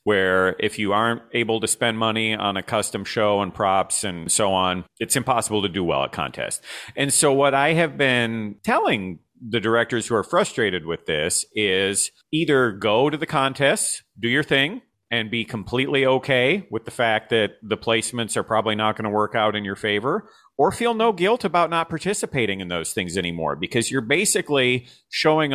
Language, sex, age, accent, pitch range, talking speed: English, male, 40-59, American, 110-145 Hz, 195 wpm